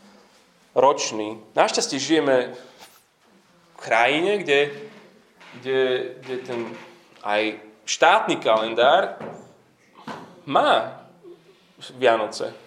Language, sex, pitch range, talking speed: Slovak, male, 120-155 Hz, 65 wpm